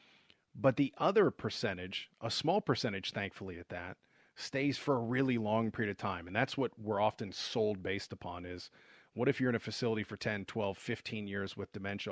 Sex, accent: male, American